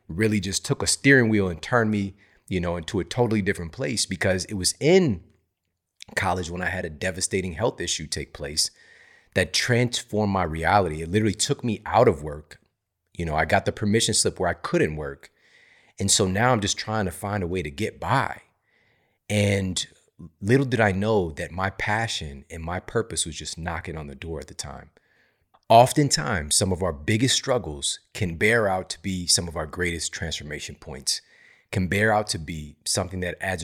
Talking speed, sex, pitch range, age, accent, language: 195 wpm, male, 85-110 Hz, 30-49, American, English